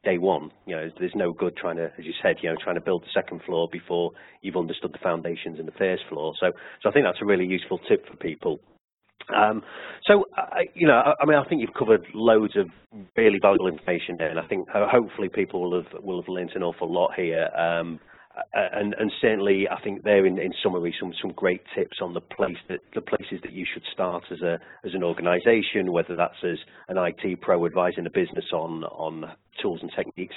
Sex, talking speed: male, 225 wpm